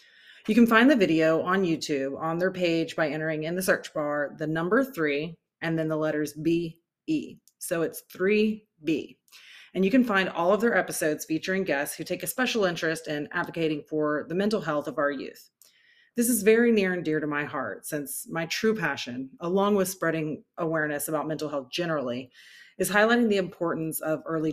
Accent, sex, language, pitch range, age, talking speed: American, female, English, 155-200 Hz, 30-49, 195 wpm